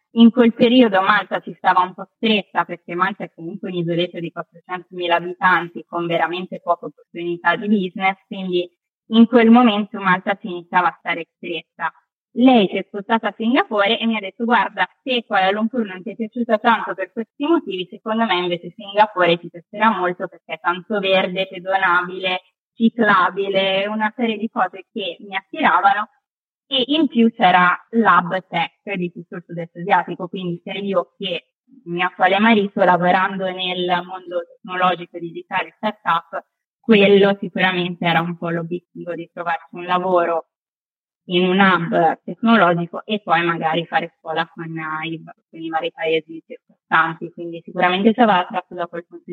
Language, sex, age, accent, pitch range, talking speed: Italian, female, 20-39, native, 175-215 Hz, 160 wpm